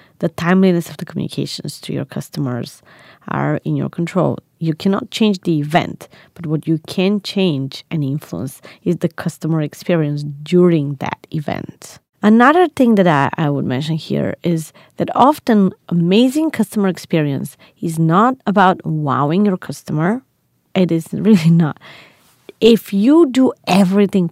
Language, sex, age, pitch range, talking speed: English, female, 30-49, 165-205 Hz, 145 wpm